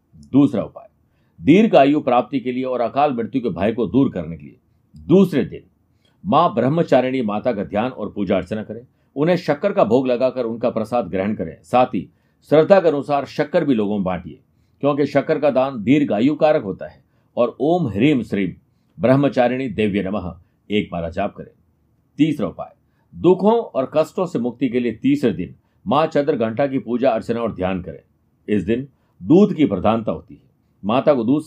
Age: 50-69